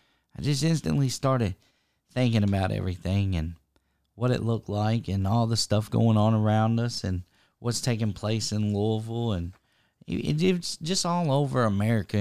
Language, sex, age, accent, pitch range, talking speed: English, male, 40-59, American, 110-140 Hz, 155 wpm